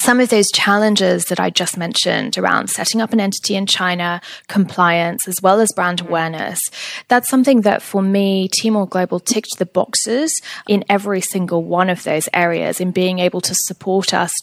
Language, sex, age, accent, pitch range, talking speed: English, female, 10-29, British, 175-215 Hz, 185 wpm